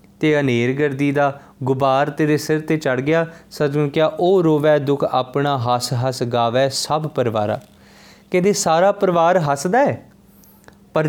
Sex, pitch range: male, 130-165 Hz